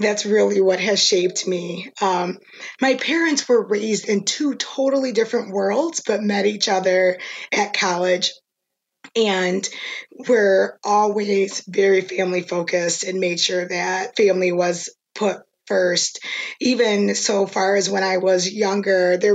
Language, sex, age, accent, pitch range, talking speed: English, female, 20-39, American, 180-215 Hz, 140 wpm